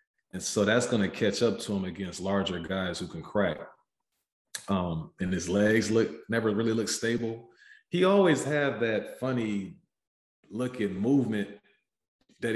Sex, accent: male, American